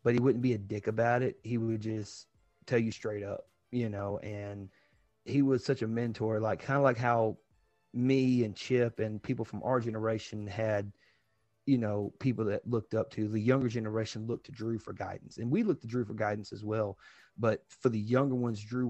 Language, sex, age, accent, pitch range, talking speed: English, male, 30-49, American, 100-125 Hz, 215 wpm